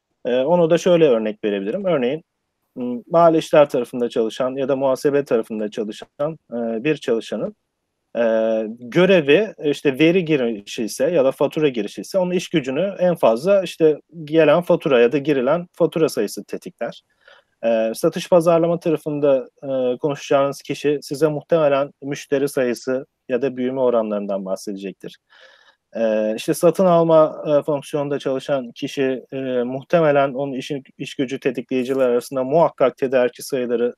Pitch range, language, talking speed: 125-170 Hz, Turkish, 130 wpm